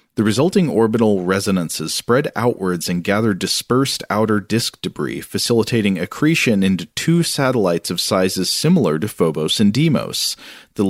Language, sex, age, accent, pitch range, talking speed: English, male, 40-59, American, 90-115 Hz, 140 wpm